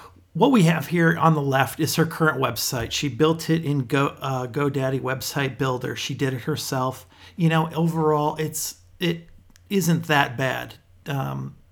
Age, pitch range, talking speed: 40-59, 125-155 Hz, 170 wpm